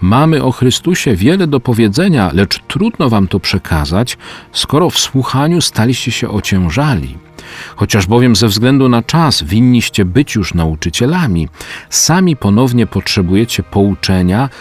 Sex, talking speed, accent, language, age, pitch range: male, 125 wpm, native, Polish, 40-59, 85-125 Hz